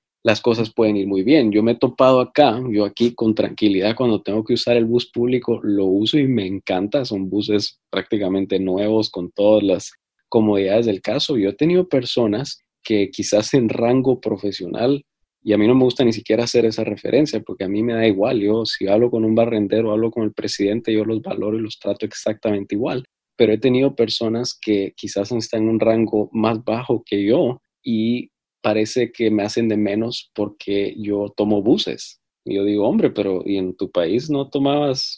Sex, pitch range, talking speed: male, 105-125 Hz, 200 wpm